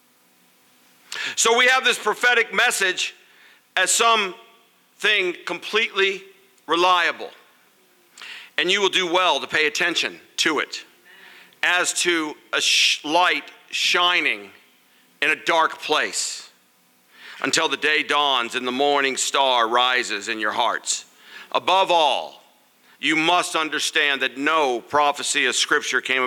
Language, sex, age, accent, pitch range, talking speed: English, male, 50-69, American, 130-190 Hz, 120 wpm